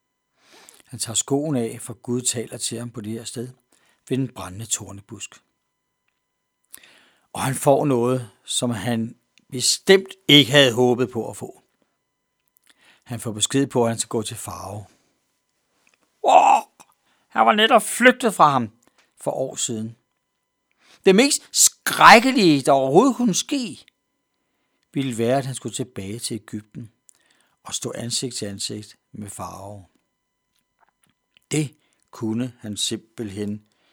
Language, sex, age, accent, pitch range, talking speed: Danish, male, 60-79, native, 110-150 Hz, 135 wpm